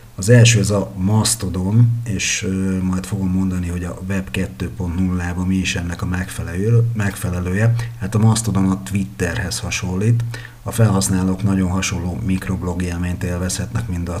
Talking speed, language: 150 wpm, Hungarian